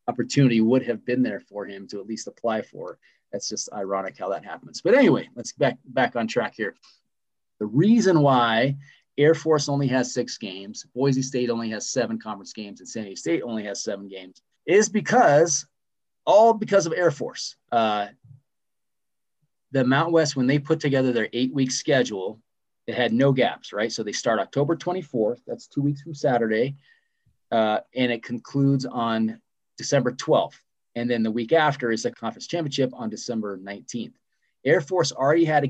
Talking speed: 180 wpm